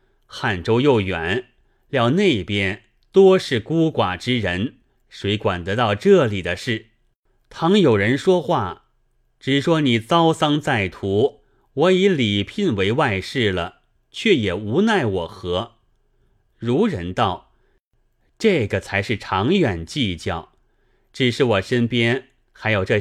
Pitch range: 100-140 Hz